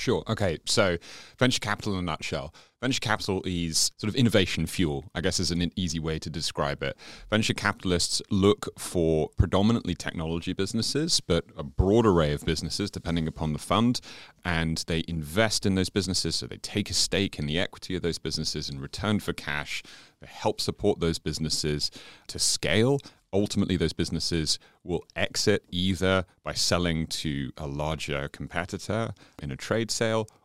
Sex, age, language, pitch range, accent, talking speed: male, 30-49, English, 80-105 Hz, British, 170 wpm